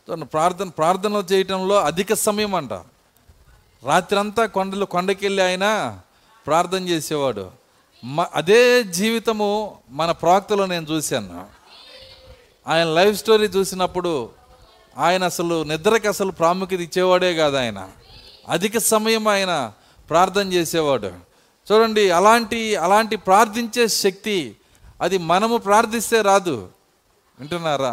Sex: male